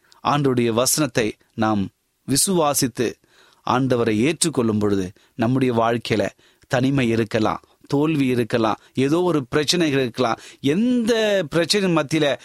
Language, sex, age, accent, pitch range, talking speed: Tamil, male, 30-49, native, 120-165 Hz, 95 wpm